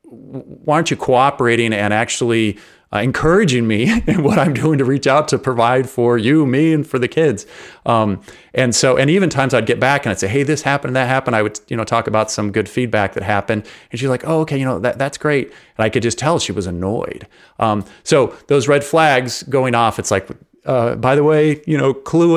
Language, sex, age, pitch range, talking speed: English, male, 30-49, 105-140 Hz, 235 wpm